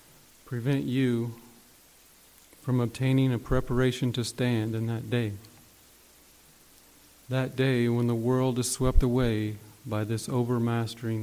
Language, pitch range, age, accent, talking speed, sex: English, 110-125 Hz, 40-59, American, 120 wpm, male